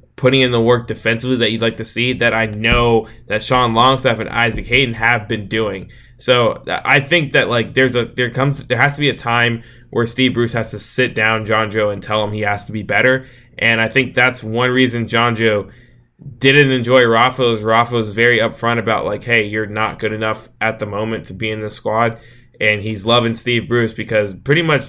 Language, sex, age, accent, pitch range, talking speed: English, male, 20-39, American, 105-120 Hz, 220 wpm